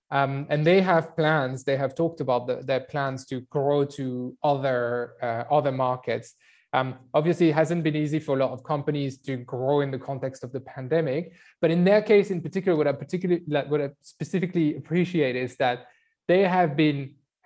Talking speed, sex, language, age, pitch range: 195 wpm, male, English, 20-39, 135-165 Hz